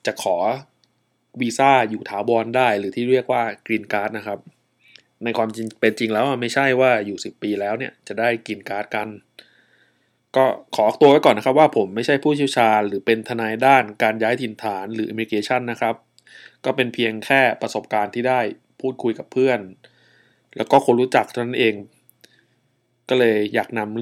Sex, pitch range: male, 110-130 Hz